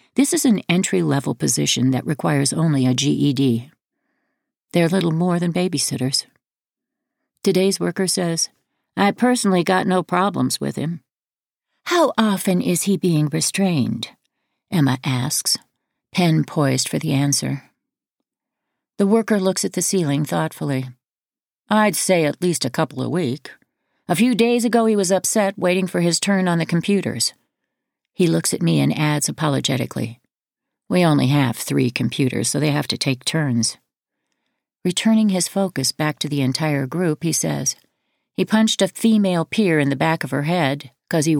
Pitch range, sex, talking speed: 145-205 Hz, female, 155 wpm